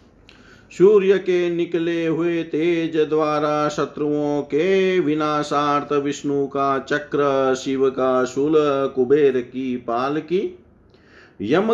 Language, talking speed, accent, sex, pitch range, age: Hindi, 95 wpm, native, male, 140-180 Hz, 50-69